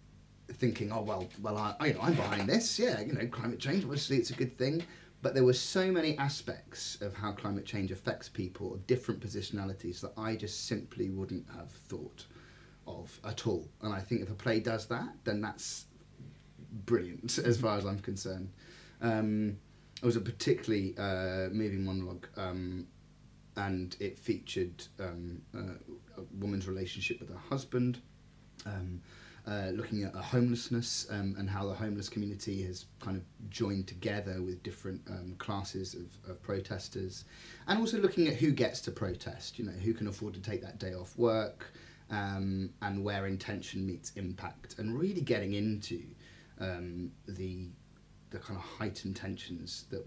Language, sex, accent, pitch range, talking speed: English, male, British, 95-115 Hz, 170 wpm